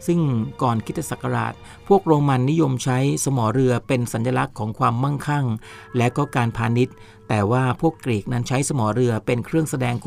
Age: 60-79